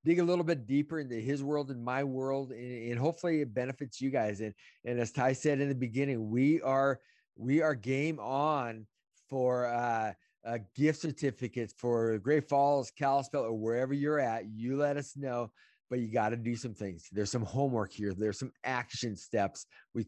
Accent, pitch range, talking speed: American, 110-135 Hz, 195 wpm